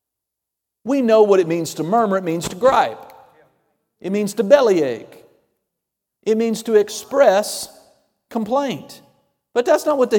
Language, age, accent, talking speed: English, 50-69, American, 145 wpm